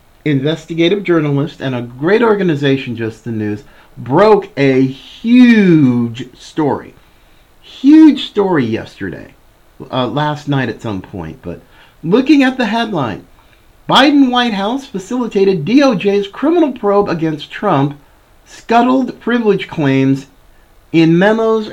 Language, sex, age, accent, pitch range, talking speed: English, male, 50-69, American, 135-200 Hz, 115 wpm